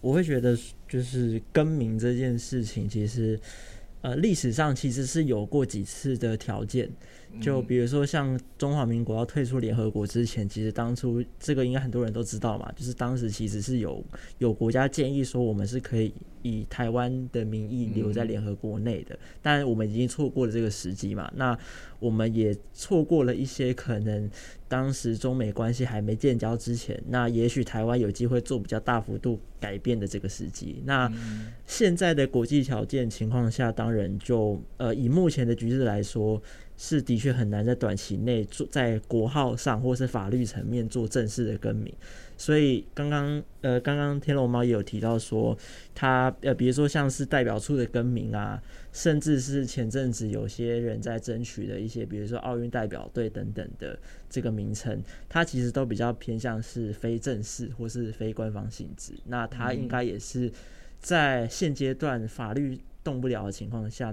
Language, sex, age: Chinese, male, 20-39